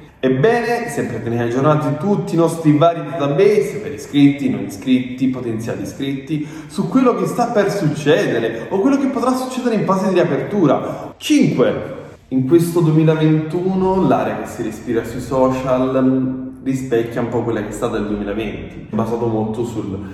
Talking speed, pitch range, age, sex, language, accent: 155 wpm, 120-150 Hz, 20-39, male, Italian, native